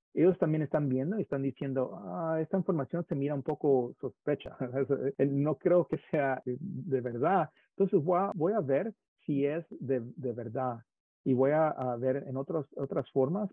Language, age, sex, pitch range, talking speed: English, 40-59, male, 125-155 Hz, 170 wpm